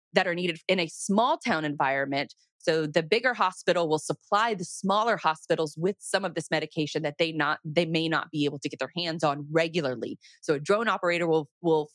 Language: English